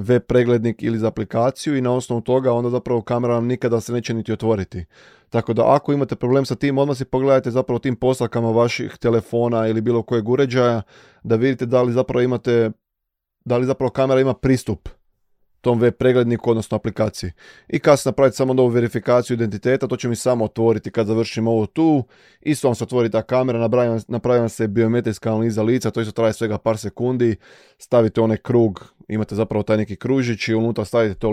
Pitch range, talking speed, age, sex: 110-125 Hz, 190 wpm, 20-39, male